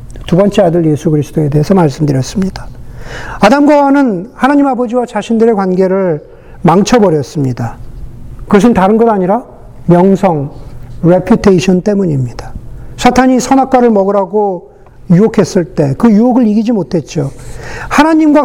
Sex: male